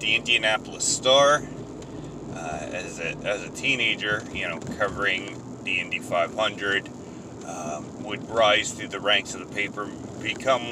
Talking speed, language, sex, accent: 135 wpm, English, male, American